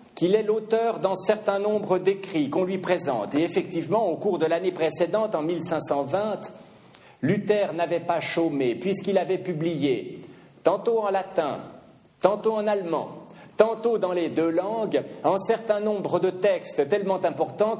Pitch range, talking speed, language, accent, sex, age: 155-205 Hz, 150 wpm, French, French, male, 50-69